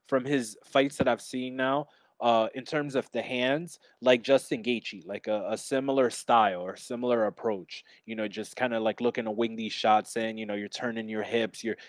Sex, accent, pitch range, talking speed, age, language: male, American, 105-125 Hz, 215 wpm, 20-39, English